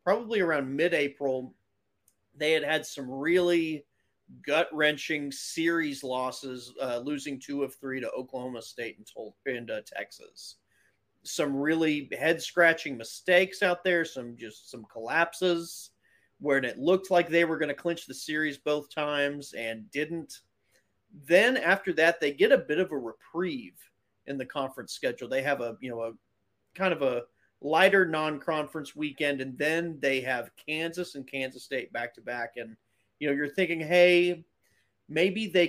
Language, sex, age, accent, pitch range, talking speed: English, male, 30-49, American, 130-165 Hz, 155 wpm